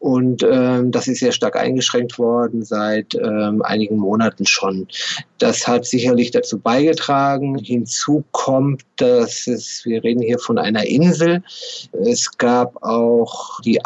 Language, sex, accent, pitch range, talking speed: German, male, German, 115-140 Hz, 140 wpm